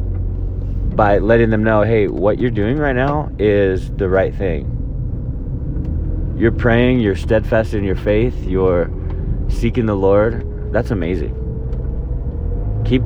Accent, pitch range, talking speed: American, 95-115 Hz, 130 wpm